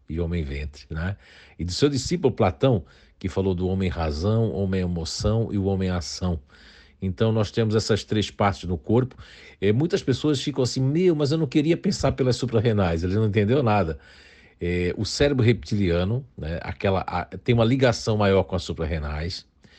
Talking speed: 165 wpm